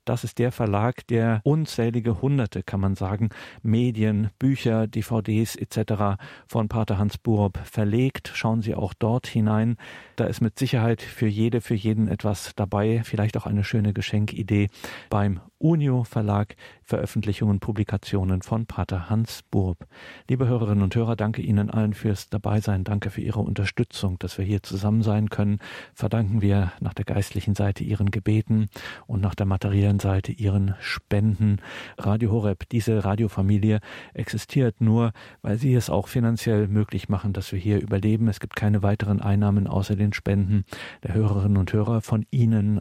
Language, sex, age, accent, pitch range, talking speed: German, male, 50-69, German, 100-115 Hz, 160 wpm